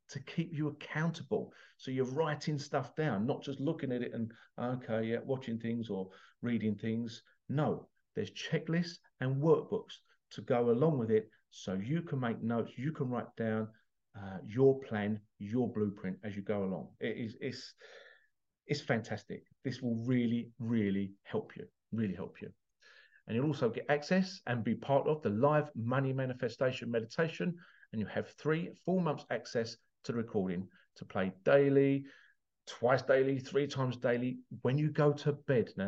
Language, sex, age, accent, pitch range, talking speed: English, male, 50-69, British, 110-140 Hz, 170 wpm